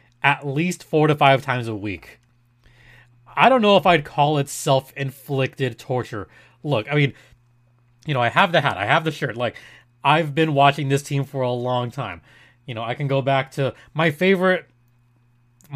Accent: American